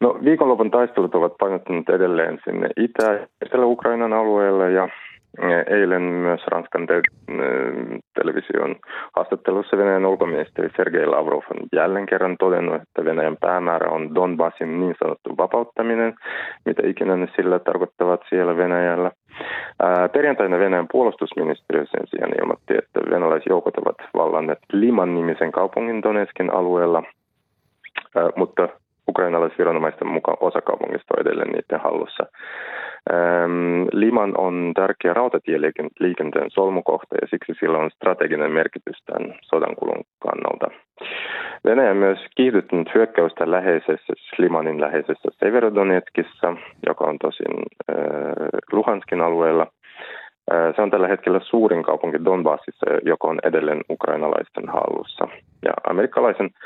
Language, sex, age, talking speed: Finnish, male, 30-49, 120 wpm